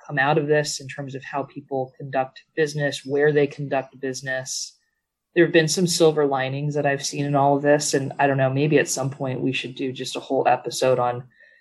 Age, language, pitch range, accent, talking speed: 20-39, English, 135-155 Hz, American, 220 wpm